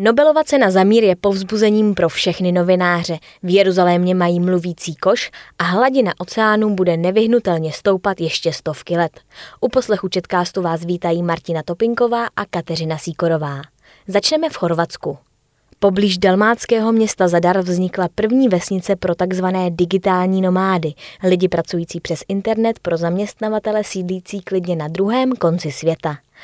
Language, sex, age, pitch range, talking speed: Czech, female, 20-39, 170-210 Hz, 135 wpm